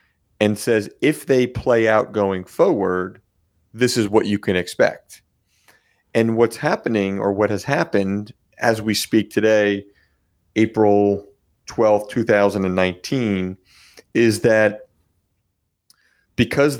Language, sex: English, male